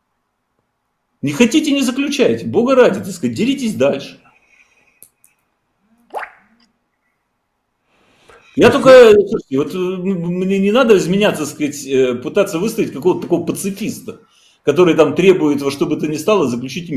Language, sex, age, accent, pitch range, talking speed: Russian, male, 40-59, native, 145-220 Hz, 115 wpm